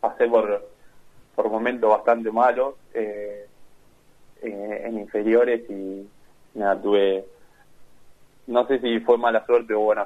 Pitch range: 100-140 Hz